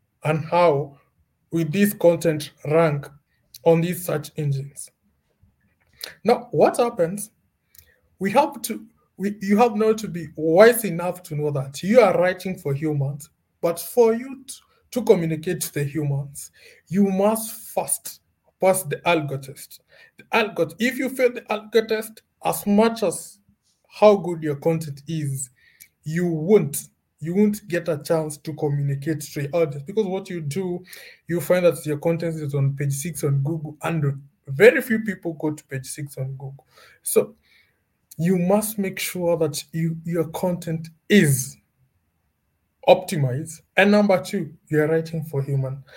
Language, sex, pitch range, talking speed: English, male, 150-195 Hz, 155 wpm